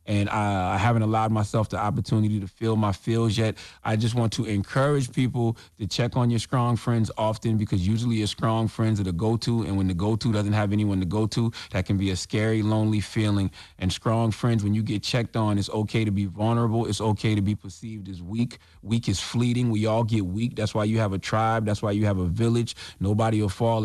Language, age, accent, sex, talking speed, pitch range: English, 30-49, American, male, 235 wpm, 100-115 Hz